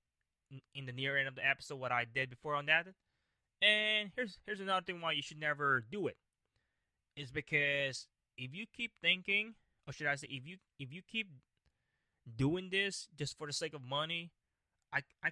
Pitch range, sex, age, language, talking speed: 125-150 Hz, male, 20-39, English, 190 wpm